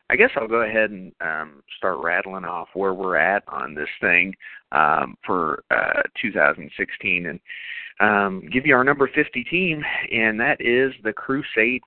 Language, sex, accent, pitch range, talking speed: English, male, American, 95-120 Hz, 165 wpm